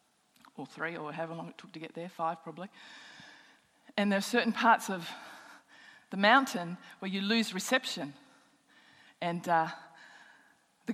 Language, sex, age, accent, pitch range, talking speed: English, female, 40-59, Australian, 200-265 Hz, 150 wpm